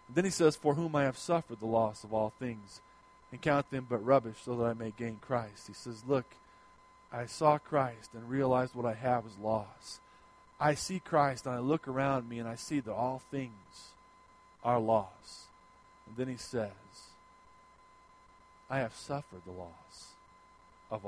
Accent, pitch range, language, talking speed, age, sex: American, 95-140 Hz, English, 180 wpm, 40-59, male